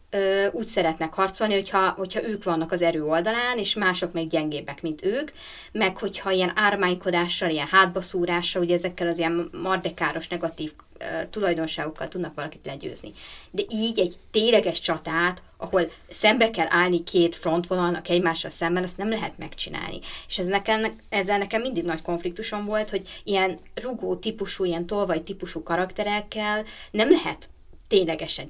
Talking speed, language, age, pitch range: 145 wpm, Hungarian, 20-39, 170-215 Hz